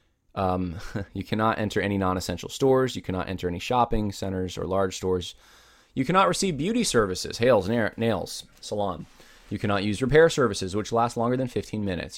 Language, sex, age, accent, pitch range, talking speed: English, male, 20-39, American, 95-140 Hz, 170 wpm